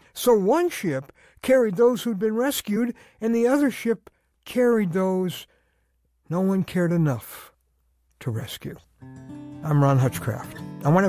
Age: 60-79